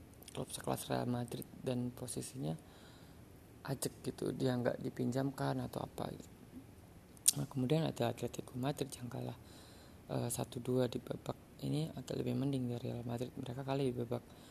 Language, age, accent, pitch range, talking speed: Indonesian, 20-39, native, 125-145 Hz, 155 wpm